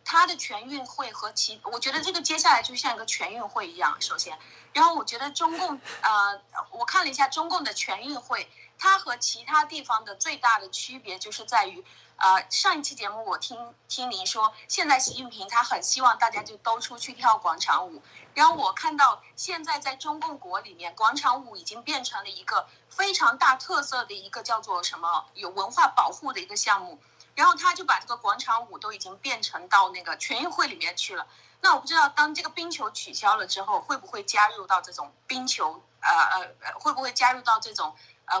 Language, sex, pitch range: Chinese, female, 220-315 Hz